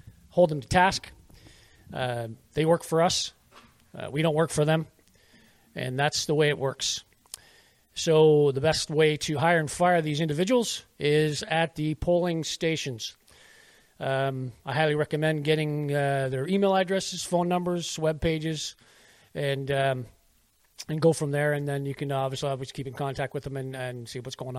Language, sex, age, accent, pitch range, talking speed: English, male, 40-59, American, 135-170 Hz, 175 wpm